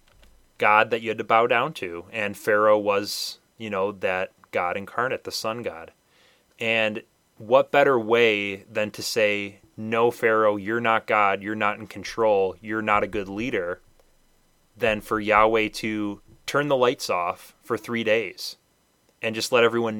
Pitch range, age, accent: 105-120 Hz, 30-49, American